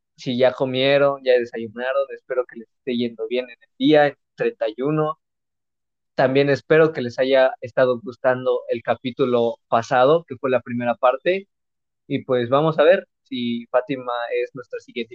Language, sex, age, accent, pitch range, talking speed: Spanish, male, 20-39, Mexican, 120-140 Hz, 160 wpm